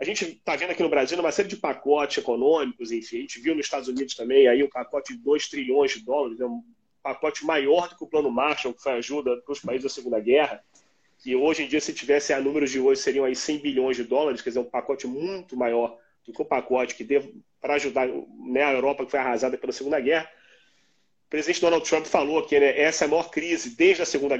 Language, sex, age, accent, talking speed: Portuguese, male, 30-49, Brazilian, 255 wpm